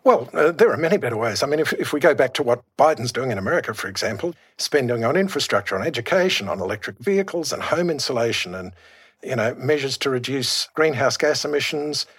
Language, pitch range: English, 120-170 Hz